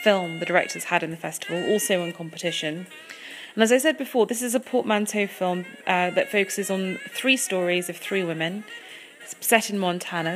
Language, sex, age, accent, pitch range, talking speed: English, female, 30-49, British, 175-215 Hz, 190 wpm